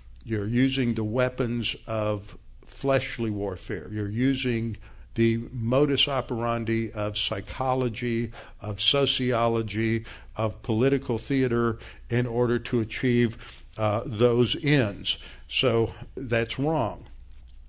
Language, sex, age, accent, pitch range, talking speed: English, male, 60-79, American, 105-130 Hz, 100 wpm